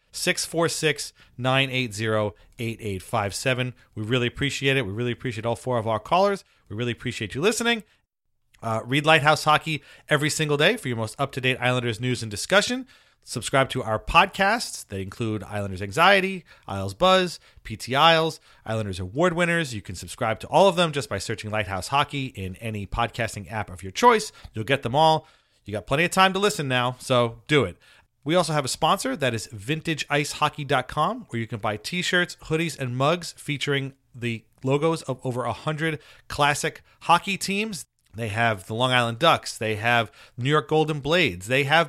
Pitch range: 110-160 Hz